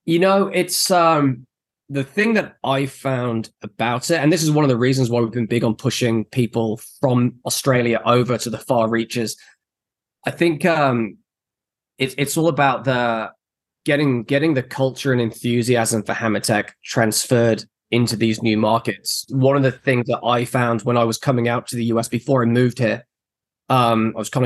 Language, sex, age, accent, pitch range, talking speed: English, male, 10-29, British, 115-140 Hz, 185 wpm